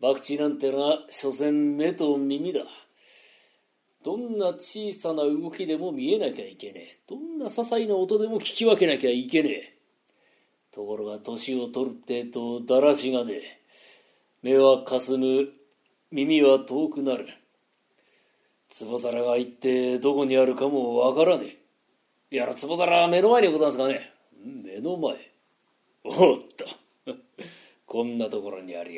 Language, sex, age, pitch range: Japanese, male, 40-59, 130-160 Hz